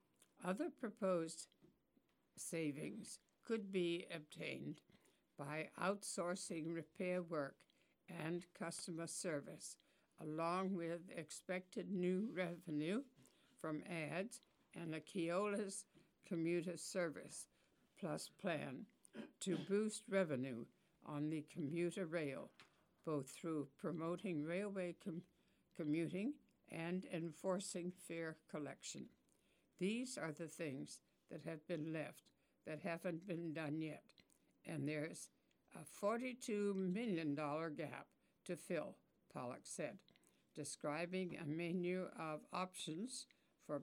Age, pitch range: 60-79, 155-190 Hz